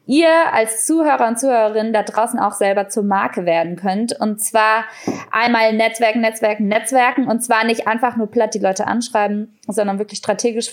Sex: female